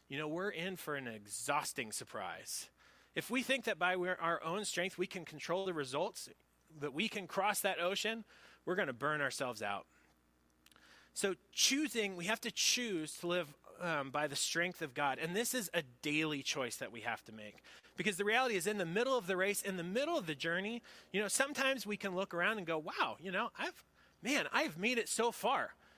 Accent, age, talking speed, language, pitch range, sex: American, 30-49, 215 wpm, English, 150-215 Hz, male